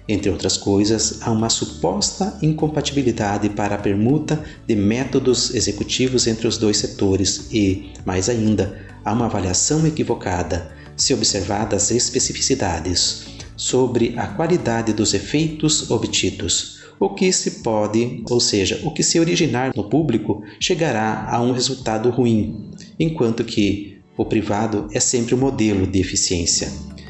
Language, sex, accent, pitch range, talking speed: Portuguese, male, Brazilian, 100-130 Hz, 135 wpm